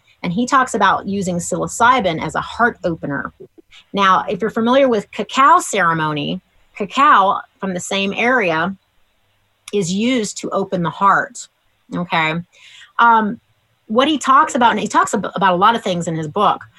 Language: English